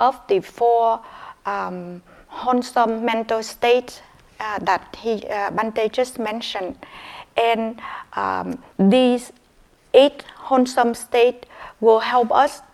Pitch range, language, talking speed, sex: 225-250 Hz, English, 105 wpm, female